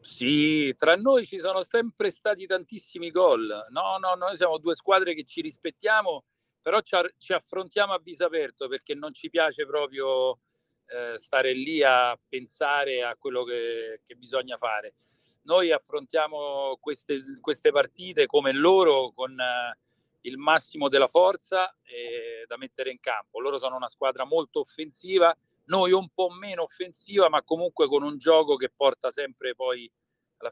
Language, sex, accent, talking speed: Italian, male, native, 145 wpm